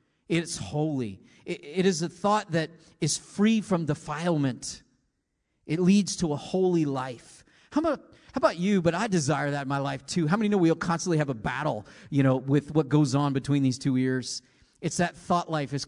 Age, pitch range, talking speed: 40-59, 140-180 Hz, 200 wpm